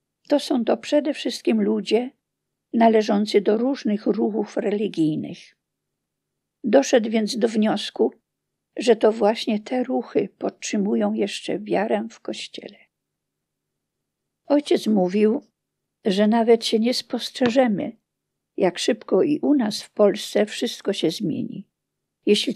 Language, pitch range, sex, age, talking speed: Polish, 200-245 Hz, female, 50-69, 115 wpm